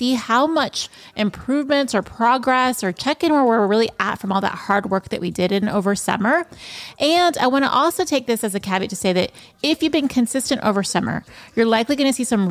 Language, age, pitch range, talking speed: English, 30-49, 185-255 Hz, 235 wpm